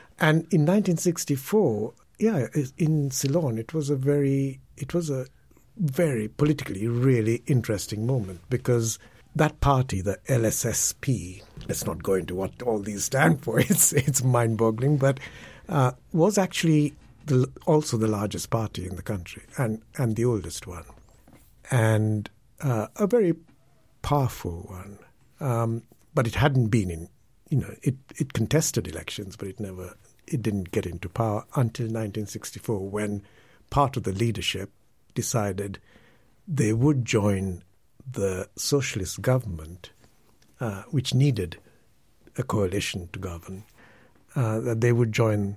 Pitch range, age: 100-135 Hz, 60-79